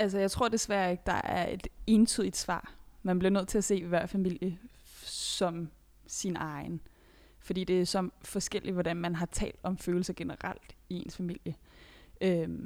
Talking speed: 170 wpm